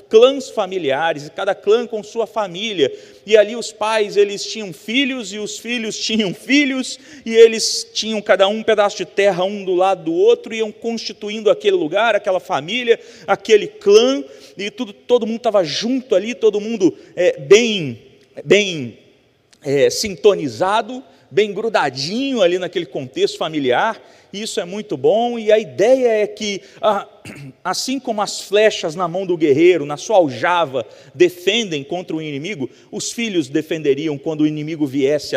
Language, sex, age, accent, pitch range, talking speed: Portuguese, male, 40-59, Brazilian, 175-260 Hz, 160 wpm